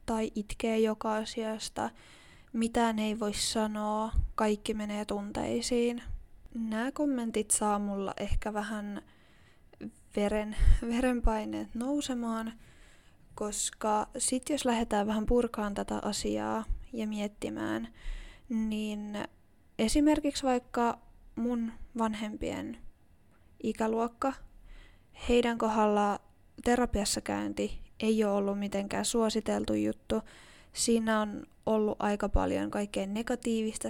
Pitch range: 205-230 Hz